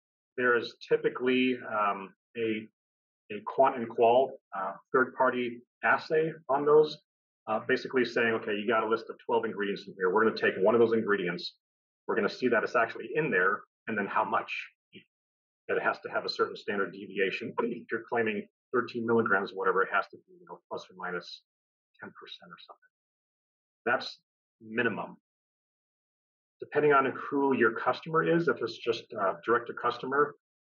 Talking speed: 175 wpm